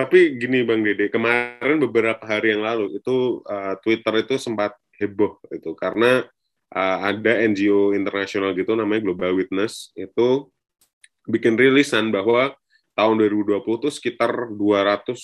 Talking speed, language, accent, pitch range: 130 wpm, Indonesian, native, 95-115 Hz